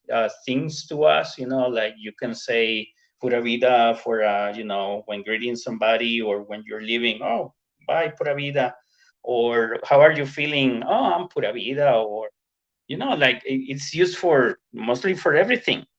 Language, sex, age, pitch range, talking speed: English, male, 30-49, 115-135 Hz, 175 wpm